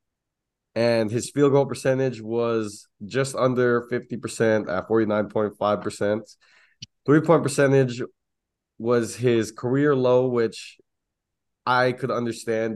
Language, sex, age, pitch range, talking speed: English, male, 20-39, 105-130 Hz, 105 wpm